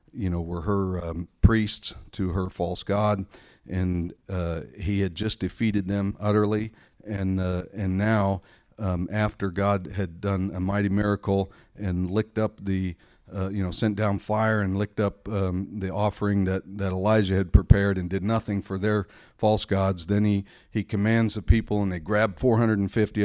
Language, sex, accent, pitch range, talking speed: English, male, American, 95-105 Hz, 175 wpm